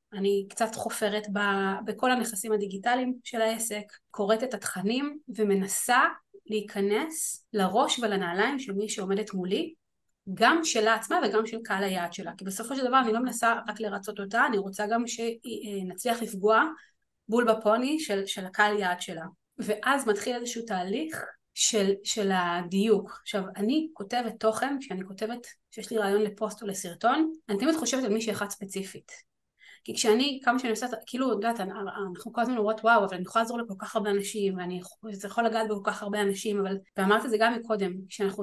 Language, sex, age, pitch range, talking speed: Hebrew, female, 30-49, 200-245 Hz, 170 wpm